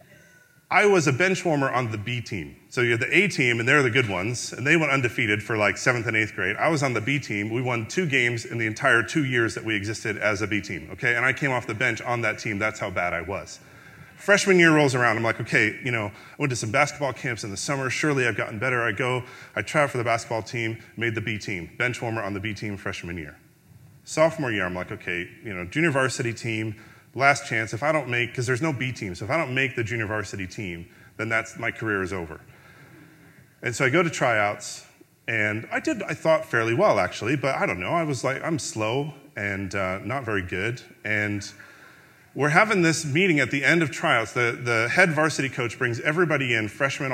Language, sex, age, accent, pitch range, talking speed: English, male, 30-49, American, 110-145 Hz, 245 wpm